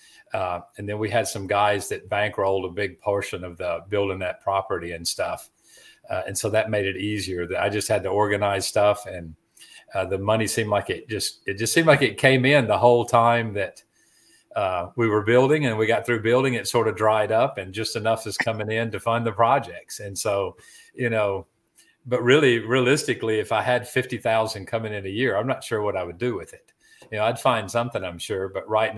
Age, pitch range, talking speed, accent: 50-69, 100-125 Hz, 225 wpm, American